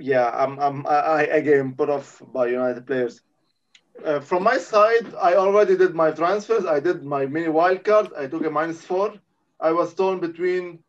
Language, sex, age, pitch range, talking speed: English, male, 20-39, 140-170 Hz, 195 wpm